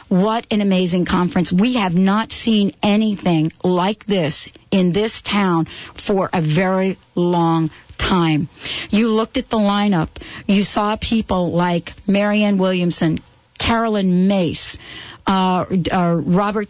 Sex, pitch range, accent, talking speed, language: female, 185-230 Hz, American, 125 wpm, English